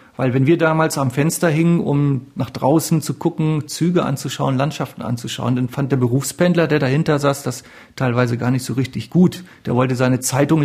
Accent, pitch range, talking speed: German, 130-160 Hz, 190 wpm